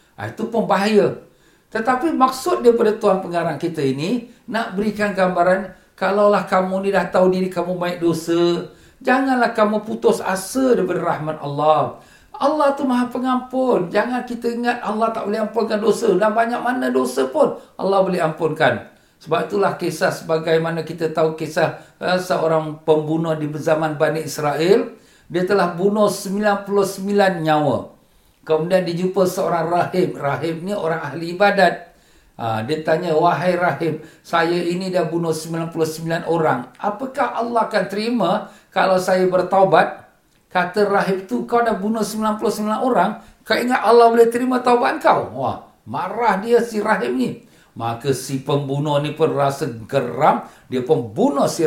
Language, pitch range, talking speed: Malay, 160-215 Hz, 145 wpm